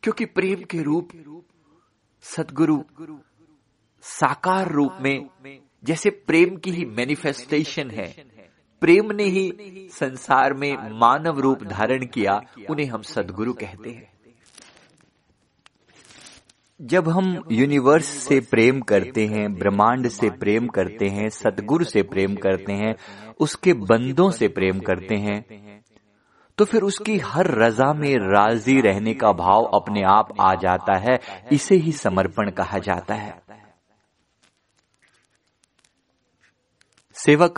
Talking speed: 120 wpm